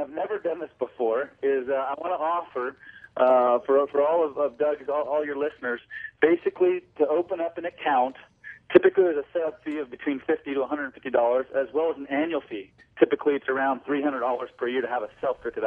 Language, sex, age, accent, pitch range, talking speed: English, male, 40-59, American, 150-185 Hz, 210 wpm